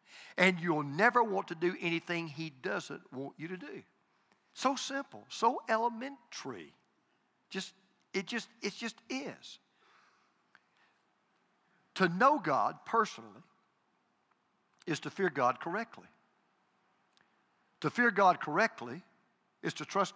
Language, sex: English, male